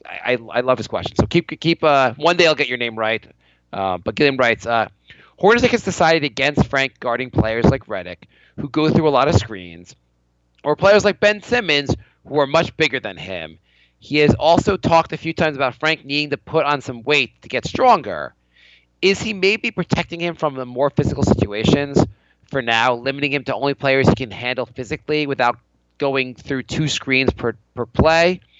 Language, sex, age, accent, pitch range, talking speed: English, male, 30-49, American, 110-155 Hz, 200 wpm